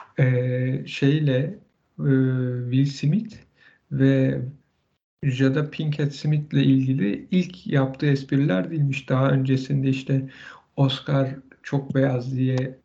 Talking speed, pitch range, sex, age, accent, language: 90 wpm, 130-150 Hz, male, 50-69, native, Turkish